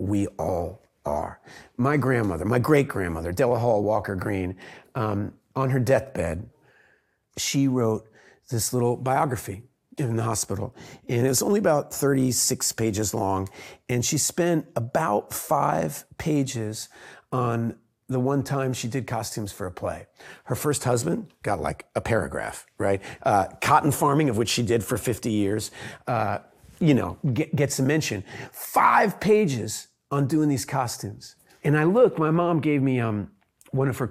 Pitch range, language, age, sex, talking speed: 105-140 Hz, Arabic, 40-59, male, 150 wpm